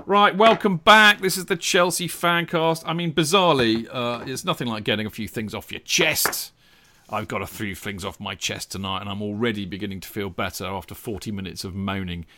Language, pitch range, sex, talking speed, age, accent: English, 110-140 Hz, male, 210 wpm, 40-59, British